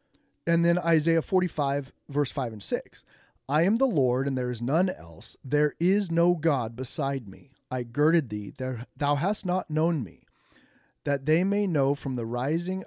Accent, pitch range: American, 125-175 Hz